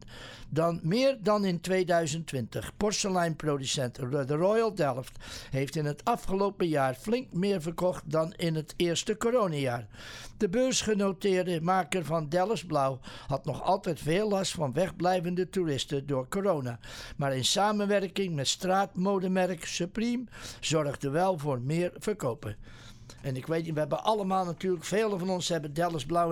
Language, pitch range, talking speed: English, 145-195 Hz, 145 wpm